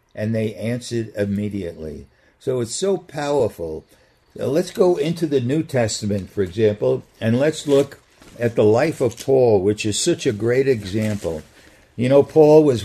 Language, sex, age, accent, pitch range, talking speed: English, male, 60-79, American, 105-145 Hz, 160 wpm